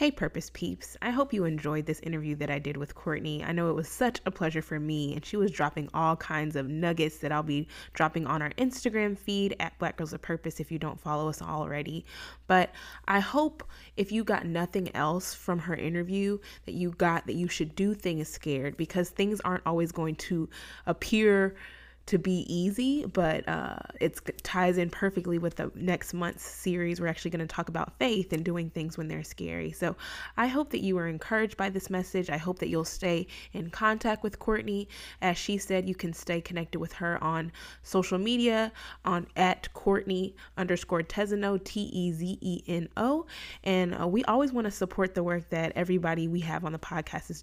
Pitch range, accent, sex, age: 160-200 Hz, American, female, 20-39